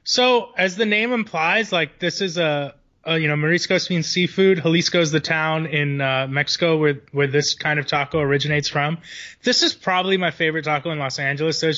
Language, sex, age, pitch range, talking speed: English, male, 20-39, 140-165 Hz, 205 wpm